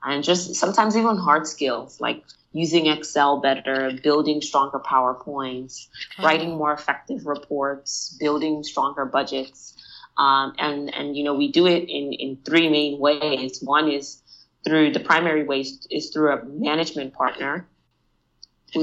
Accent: American